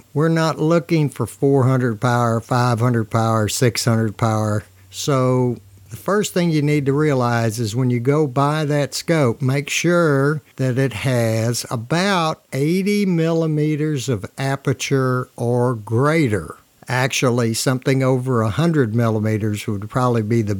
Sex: male